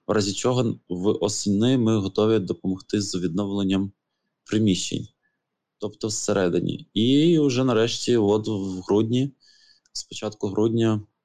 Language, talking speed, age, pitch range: Ukrainian, 105 wpm, 20-39, 95-110 Hz